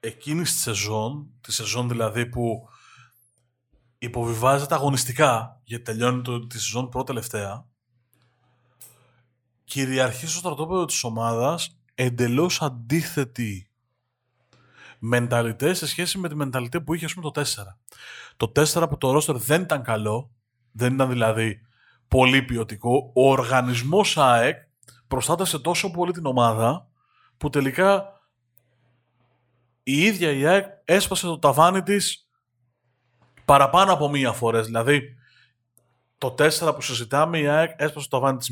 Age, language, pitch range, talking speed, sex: 30-49, Greek, 120-150 Hz, 125 wpm, male